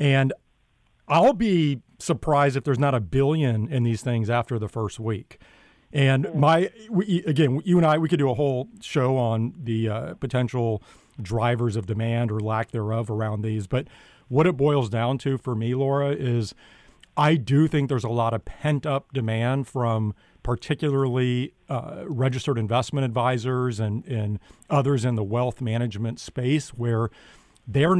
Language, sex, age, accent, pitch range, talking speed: English, male, 40-59, American, 115-140 Hz, 160 wpm